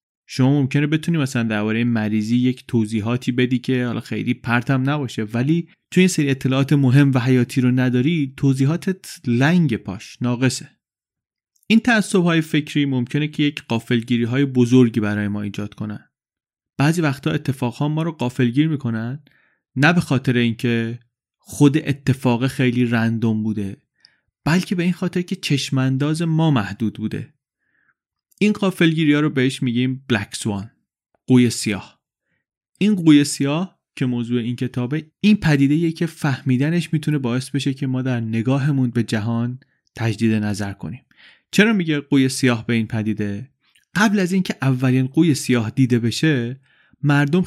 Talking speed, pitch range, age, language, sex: 145 wpm, 120-150 Hz, 30-49, Persian, male